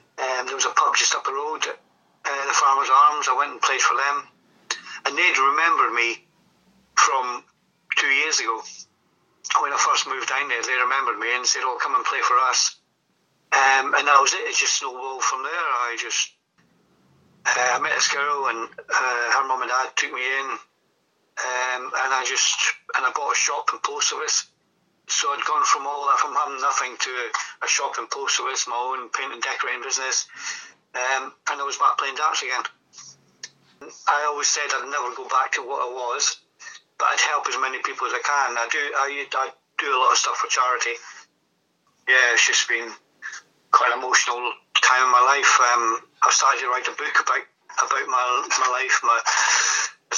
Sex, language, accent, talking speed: male, English, British, 200 wpm